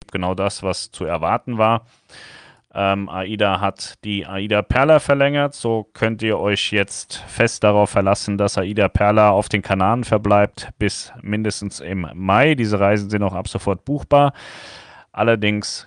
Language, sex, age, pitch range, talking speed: German, male, 30-49, 100-120 Hz, 150 wpm